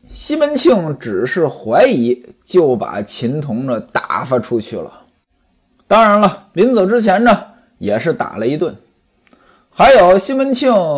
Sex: male